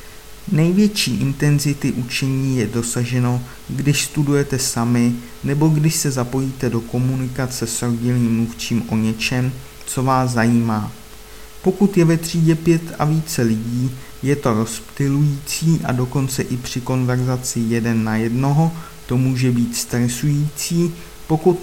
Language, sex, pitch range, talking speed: Czech, male, 120-150 Hz, 130 wpm